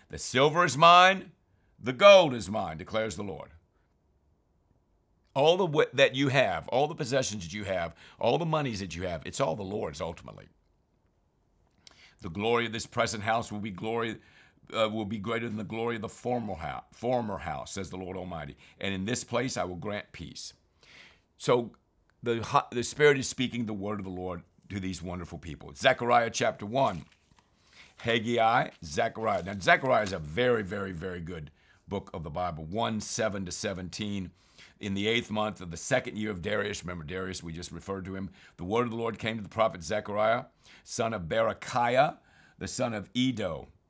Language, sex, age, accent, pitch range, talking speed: English, male, 60-79, American, 95-125 Hz, 190 wpm